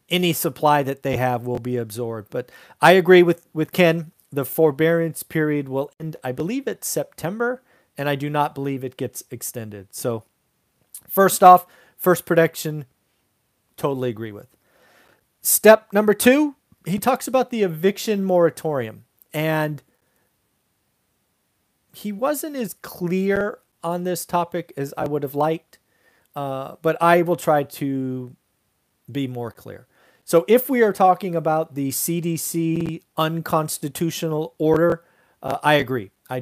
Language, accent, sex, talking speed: English, American, male, 140 wpm